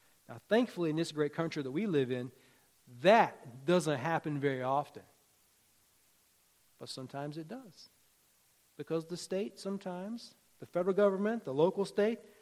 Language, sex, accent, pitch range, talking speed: English, male, American, 150-215 Hz, 140 wpm